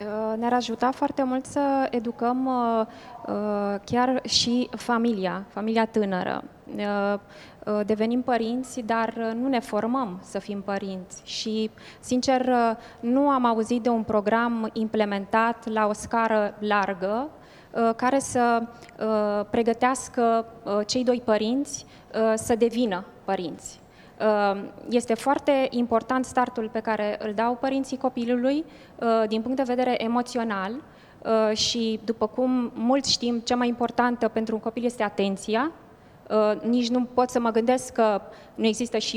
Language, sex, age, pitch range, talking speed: Romanian, female, 20-39, 215-250 Hz, 125 wpm